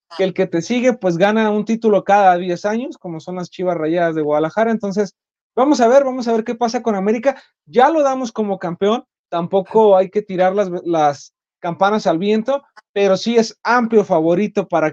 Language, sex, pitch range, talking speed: Spanish, male, 185-235 Hz, 200 wpm